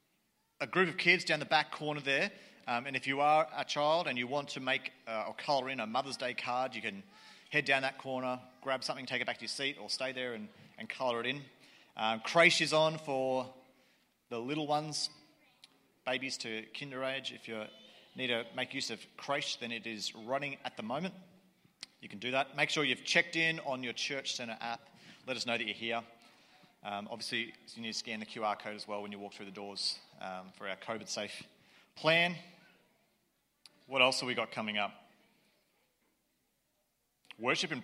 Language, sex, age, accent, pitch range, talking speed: English, male, 40-59, Australian, 115-150 Hz, 205 wpm